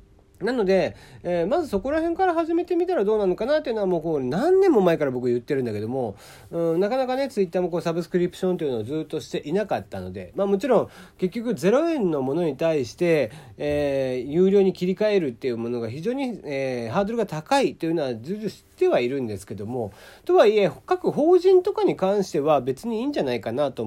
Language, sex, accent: Japanese, male, native